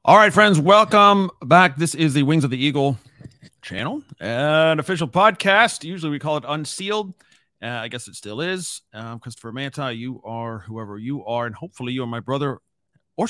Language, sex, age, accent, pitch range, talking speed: English, male, 40-59, American, 115-155 Hz, 190 wpm